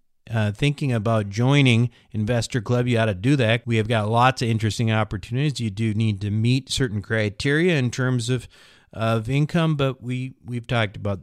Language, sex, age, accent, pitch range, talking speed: English, male, 40-59, American, 120-160 Hz, 180 wpm